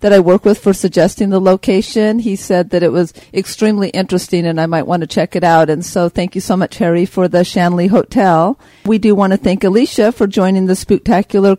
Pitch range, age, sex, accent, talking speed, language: 180-210 Hz, 50-69, female, American, 230 wpm, English